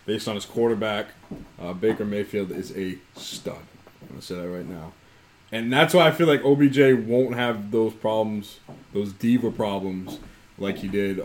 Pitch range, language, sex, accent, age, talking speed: 105-135 Hz, English, male, American, 20-39, 180 wpm